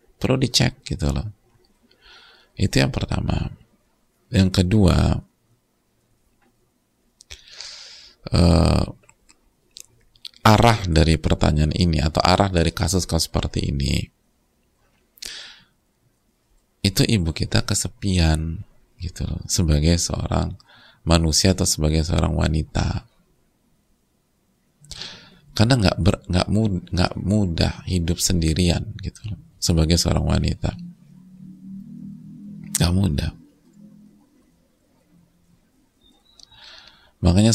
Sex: male